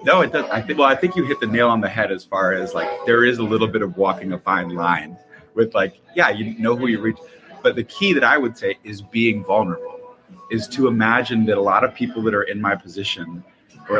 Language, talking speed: English, 260 wpm